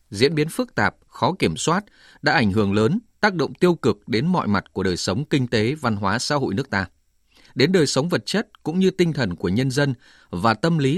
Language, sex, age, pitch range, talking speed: Vietnamese, male, 20-39, 100-155 Hz, 240 wpm